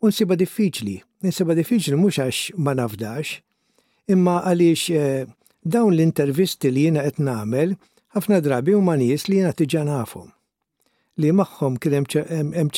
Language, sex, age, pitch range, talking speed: English, male, 60-79, 140-180 Hz, 135 wpm